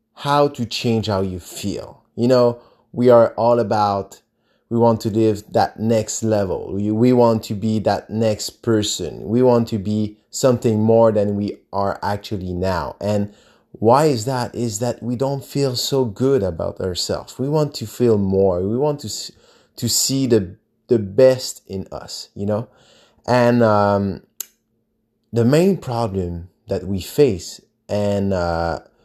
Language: English